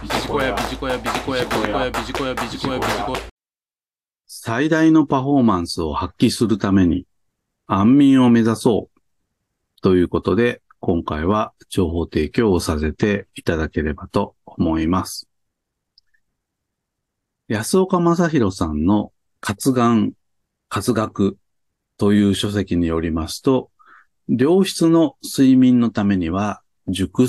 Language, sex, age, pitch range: Japanese, male, 40-59, 95-135 Hz